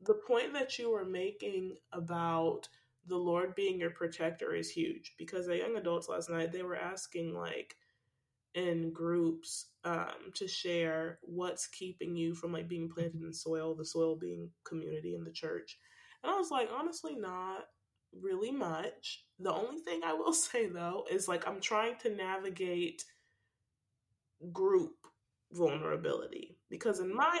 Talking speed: 155 wpm